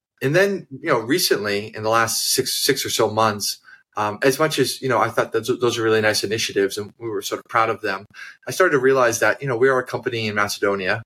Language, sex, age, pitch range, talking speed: English, male, 20-39, 100-135 Hz, 260 wpm